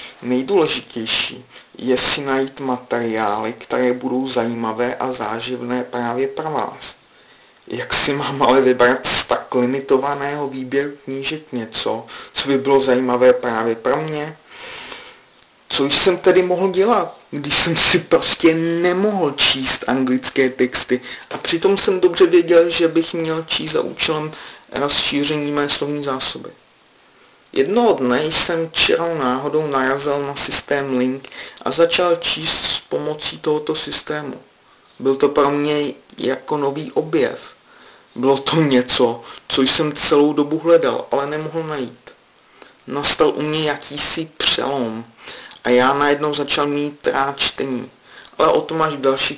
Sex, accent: male, native